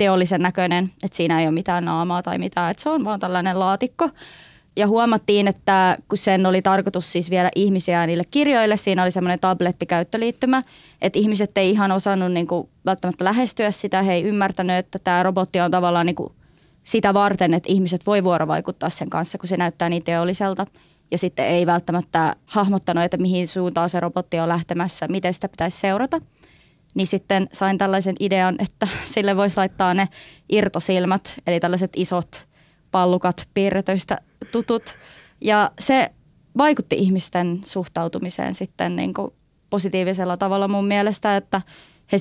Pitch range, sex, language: 175-200 Hz, female, Finnish